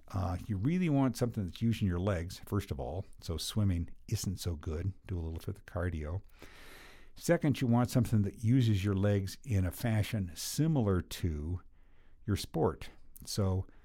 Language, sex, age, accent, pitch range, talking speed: English, male, 50-69, American, 90-115 Hz, 170 wpm